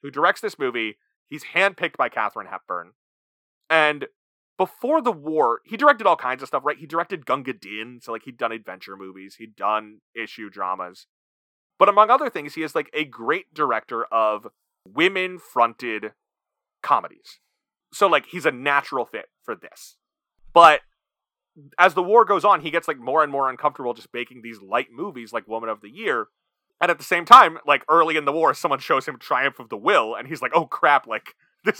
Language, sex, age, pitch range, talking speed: English, male, 30-49, 115-185 Hz, 190 wpm